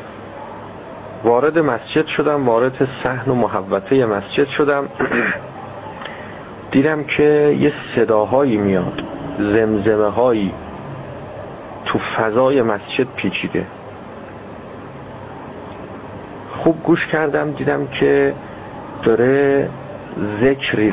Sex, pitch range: male, 110-150 Hz